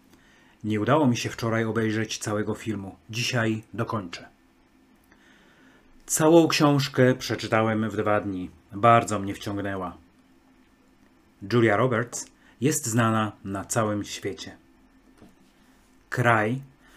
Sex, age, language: male, 30-49, Polish